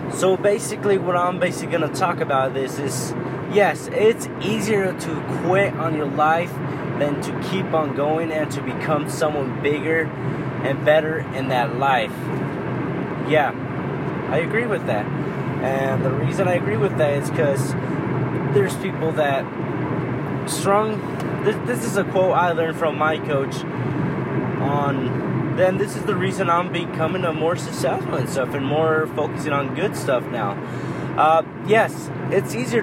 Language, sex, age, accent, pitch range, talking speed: English, male, 20-39, American, 140-175 Hz, 155 wpm